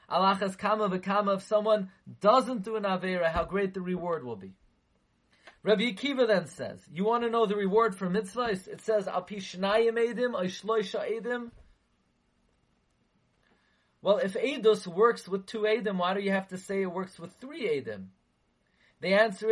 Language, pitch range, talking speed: English, 195-240 Hz, 155 wpm